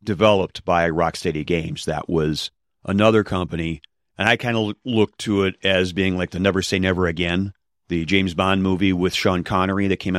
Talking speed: 190 wpm